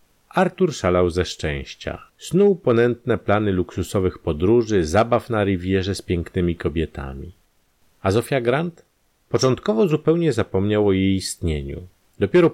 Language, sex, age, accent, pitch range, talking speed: Polish, male, 40-59, native, 85-120 Hz, 120 wpm